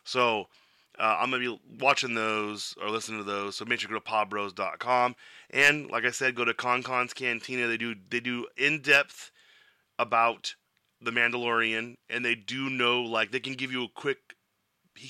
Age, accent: 30-49, American